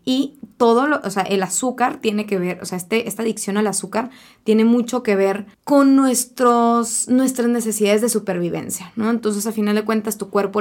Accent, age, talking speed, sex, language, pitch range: Mexican, 20-39, 185 wpm, female, Spanish, 190-225 Hz